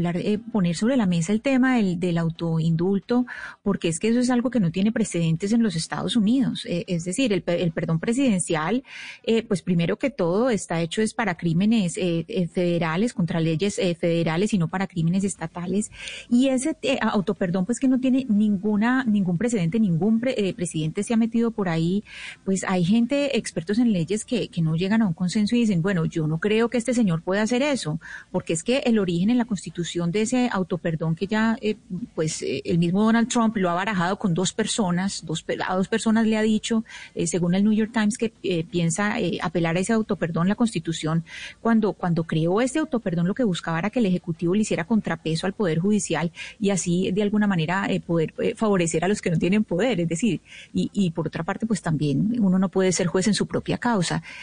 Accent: Colombian